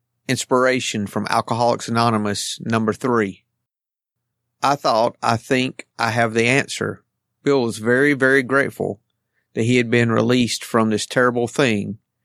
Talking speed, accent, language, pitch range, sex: 135 wpm, American, English, 110-130 Hz, male